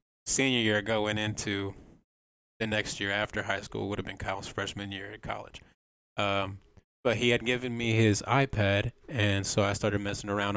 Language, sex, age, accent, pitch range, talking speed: English, male, 20-39, American, 100-115 Hz, 185 wpm